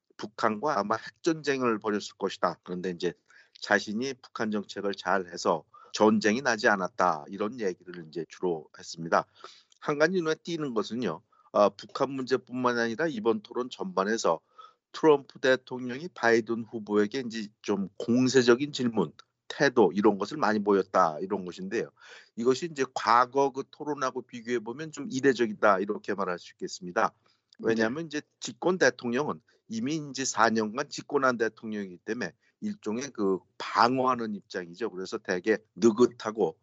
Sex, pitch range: male, 105-130 Hz